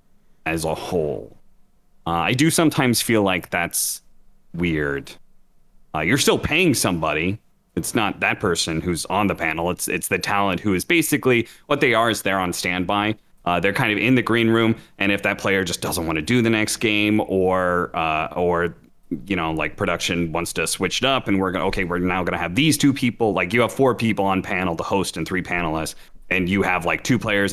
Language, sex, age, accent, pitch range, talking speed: English, male, 30-49, American, 85-110 Hz, 220 wpm